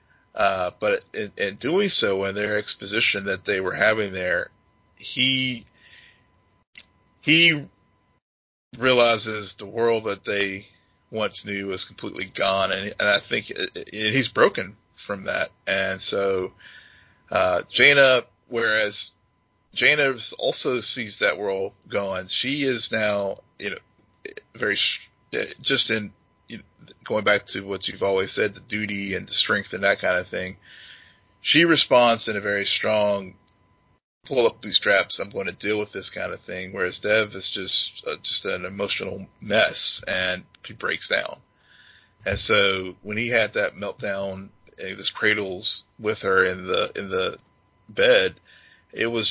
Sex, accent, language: male, American, English